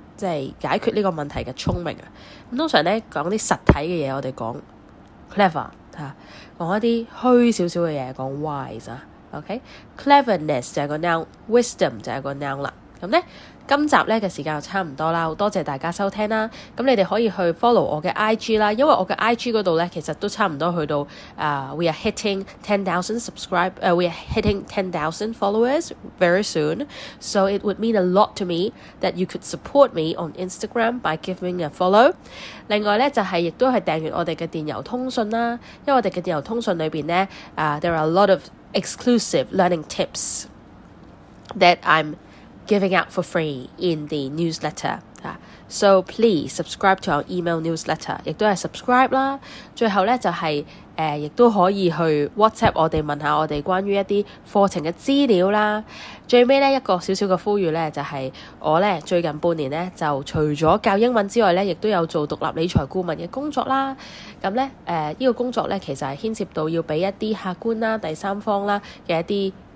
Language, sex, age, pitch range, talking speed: English, female, 10-29, 160-220 Hz, 55 wpm